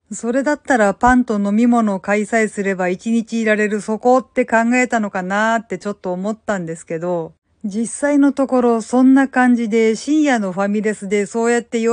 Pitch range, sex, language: 205-250 Hz, female, Japanese